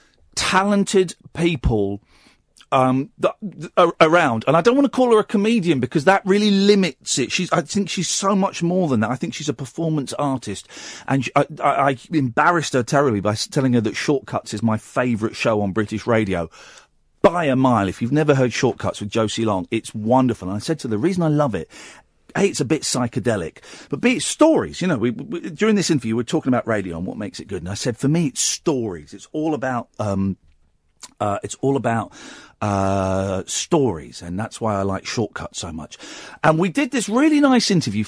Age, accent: 40-59, British